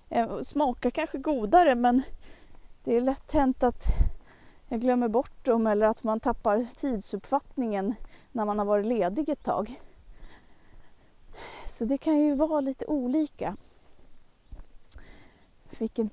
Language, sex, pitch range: Swedish, female, 205-275 Hz